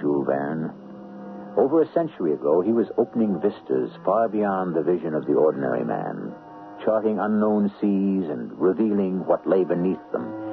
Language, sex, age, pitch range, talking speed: English, male, 60-79, 90-150 Hz, 140 wpm